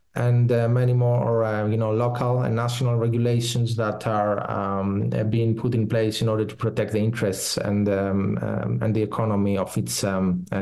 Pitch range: 115-135 Hz